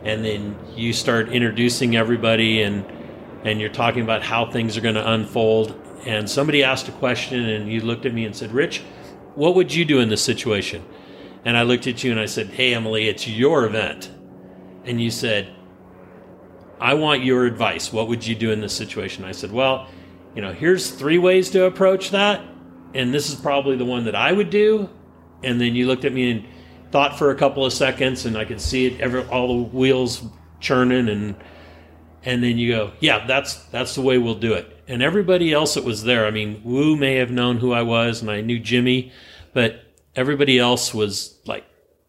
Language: English